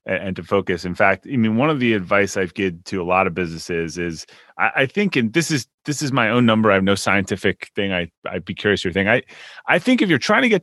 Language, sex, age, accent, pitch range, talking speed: English, male, 30-49, American, 95-115 Hz, 275 wpm